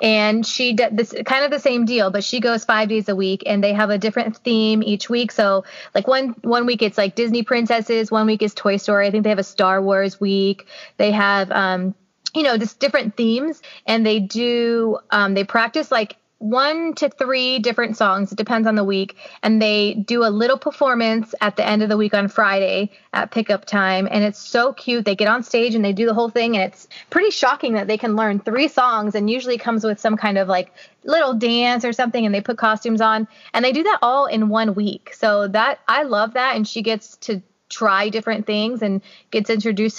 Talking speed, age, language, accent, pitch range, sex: 225 wpm, 20-39, English, American, 200-235 Hz, female